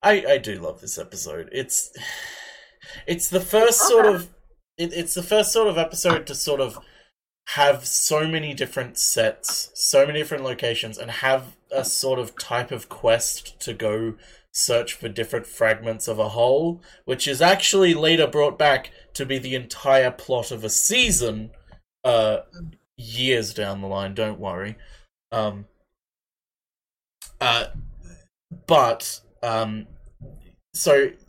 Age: 20-39